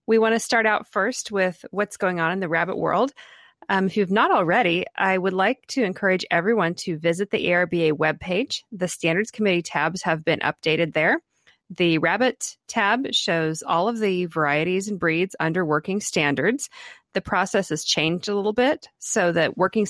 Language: English